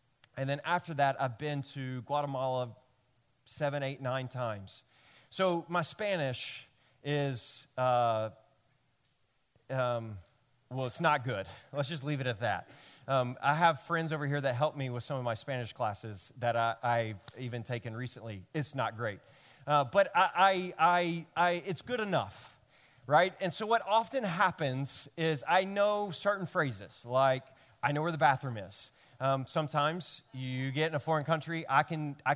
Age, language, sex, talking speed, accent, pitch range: 30-49, English, male, 160 wpm, American, 130-175 Hz